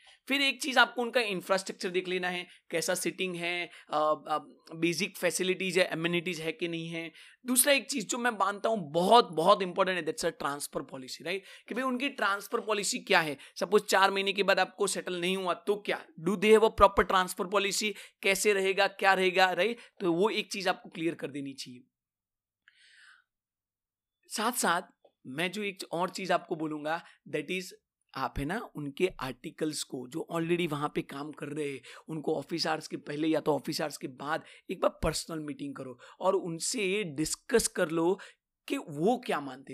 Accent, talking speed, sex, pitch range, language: native, 180 wpm, male, 165-220 Hz, Hindi